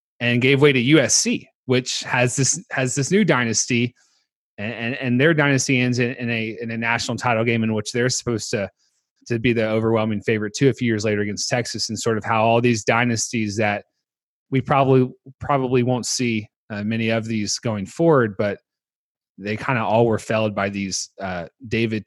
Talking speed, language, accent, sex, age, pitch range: 200 wpm, English, American, male, 30-49, 115-145 Hz